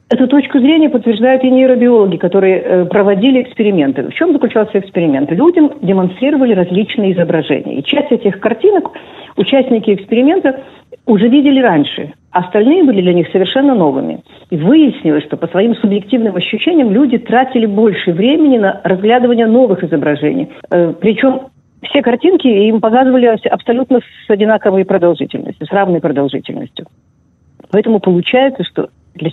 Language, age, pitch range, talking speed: Russian, 50-69, 180-260 Hz, 135 wpm